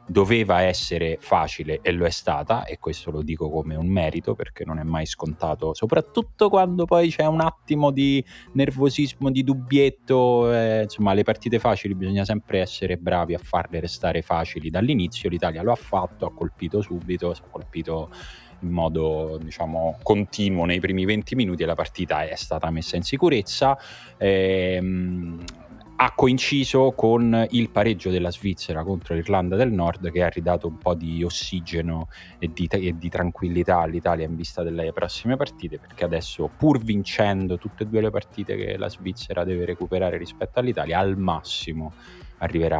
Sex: male